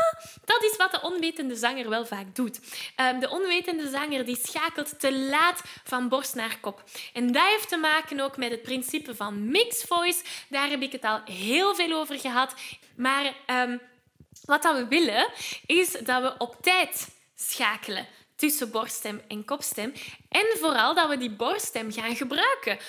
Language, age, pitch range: Dutch, 10-29, 235-315 Hz